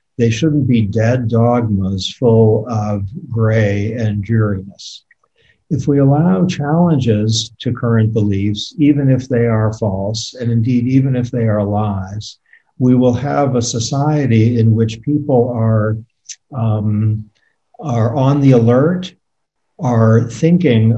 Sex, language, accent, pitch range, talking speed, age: male, English, American, 105-135 Hz, 125 wpm, 50-69